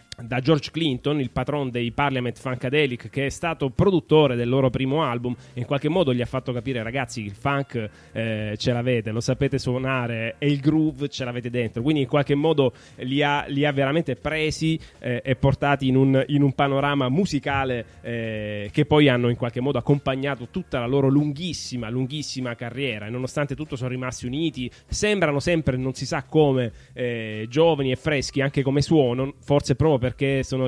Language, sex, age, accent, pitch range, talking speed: Italian, male, 20-39, native, 125-145 Hz, 190 wpm